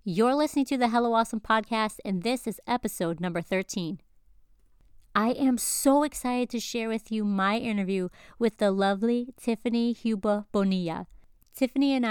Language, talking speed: English, 155 wpm